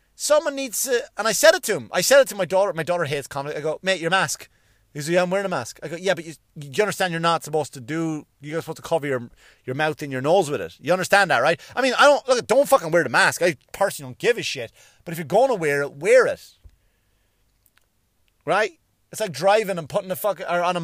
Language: English